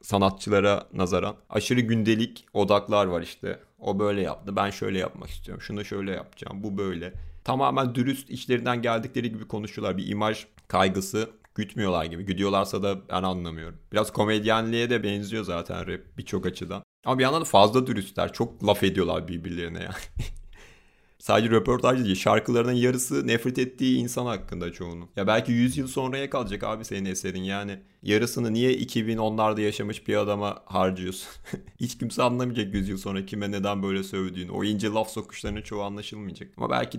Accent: native